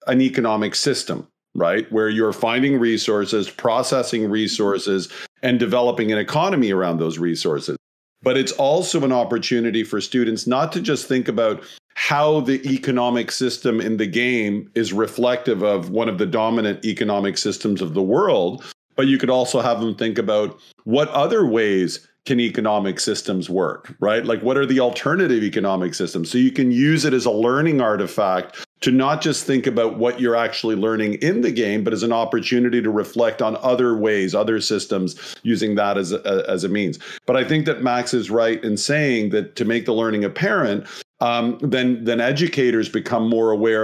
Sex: male